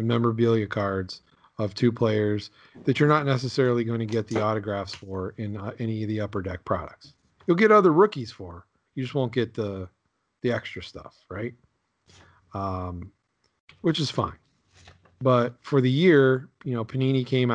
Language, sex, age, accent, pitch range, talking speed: English, male, 40-59, American, 105-125 Hz, 170 wpm